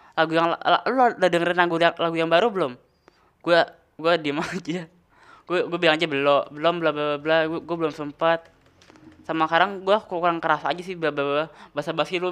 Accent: native